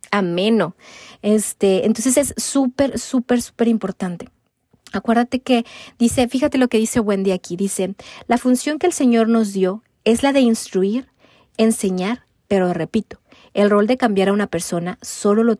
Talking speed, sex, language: 160 wpm, female, Spanish